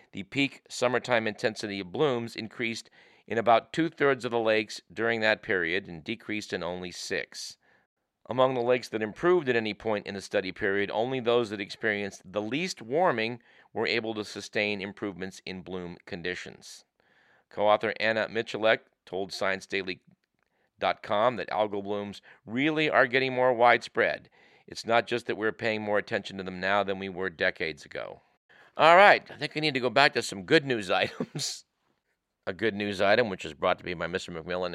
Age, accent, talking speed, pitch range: 50-69, American, 180 wpm, 95-125 Hz